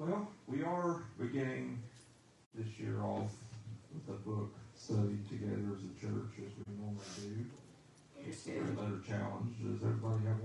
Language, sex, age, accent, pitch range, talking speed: English, male, 40-59, American, 105-120 Hz, 145 wpm